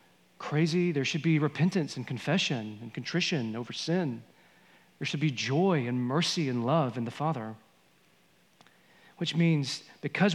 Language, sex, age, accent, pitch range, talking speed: English, male, 40-59, American, 145-185 Hz, 145 wpm